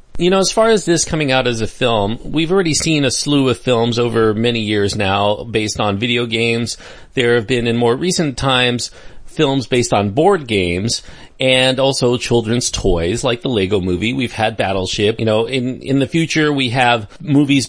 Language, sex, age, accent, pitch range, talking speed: English, male, 40-59, American, 110-135 Hz, 195 wpm